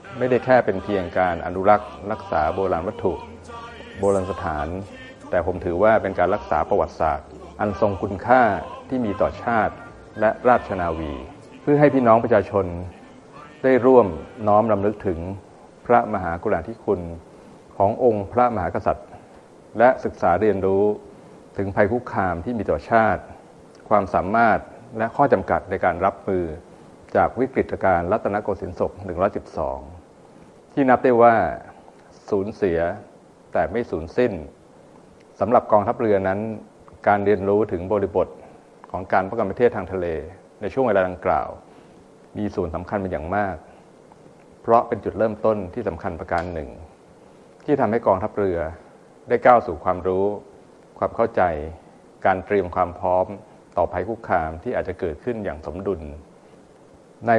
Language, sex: Thai, male